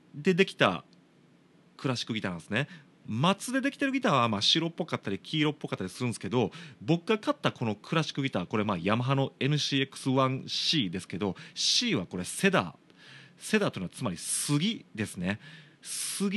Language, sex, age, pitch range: Japanese, male, 30-49, 120-200 Hz